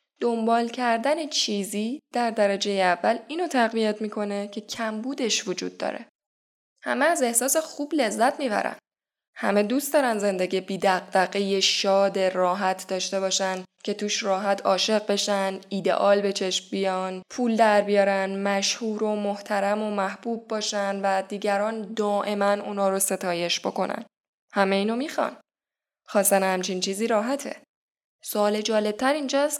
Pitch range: 195-240 Hz